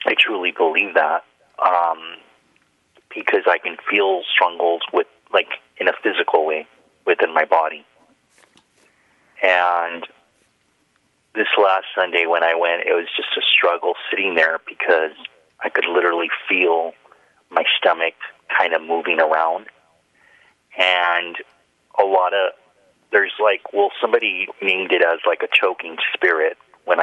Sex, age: male, 30-49